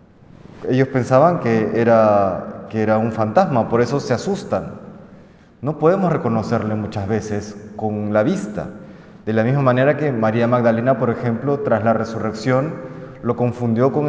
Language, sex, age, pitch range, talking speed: Spanish, male, 30-49, 115-150 Hz, 150 wpm